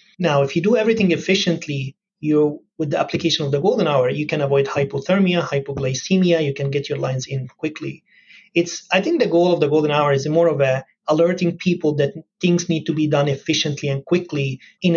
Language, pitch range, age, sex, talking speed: English, 140-175 Hz, 30-49, male, 205 wpm